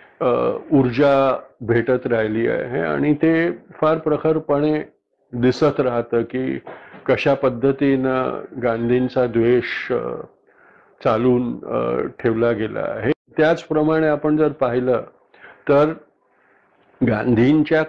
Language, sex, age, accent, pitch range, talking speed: Marathi, male, 50-69, native, 120-140 Hz, 85 wpm